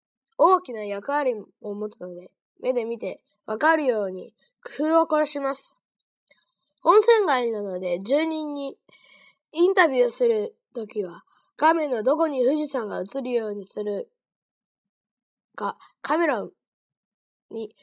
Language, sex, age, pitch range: Chinese, female, 20-39, 230-335 Hz